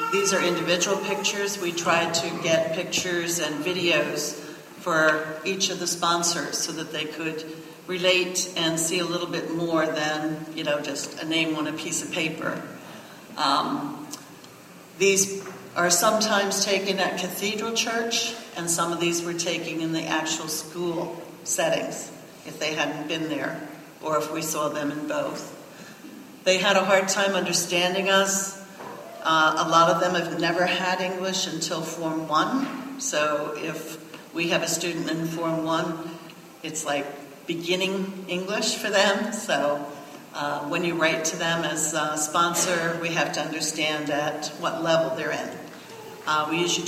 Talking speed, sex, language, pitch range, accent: 160 wpm, female, English, 155-180 Hz, American